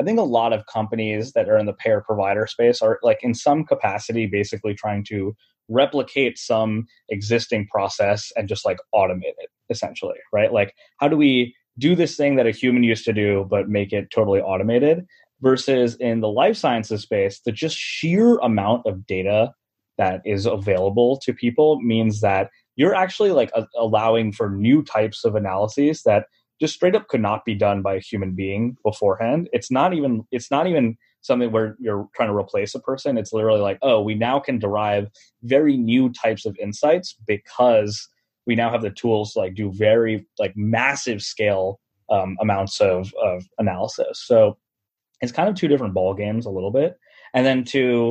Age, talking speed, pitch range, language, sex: 20-39, 185 wpm, 105-130 Hz, English, male